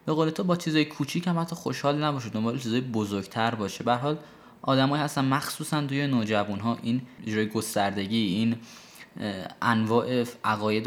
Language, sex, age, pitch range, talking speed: Persian, male, 20-39, 110-140 Hz, 145 wpm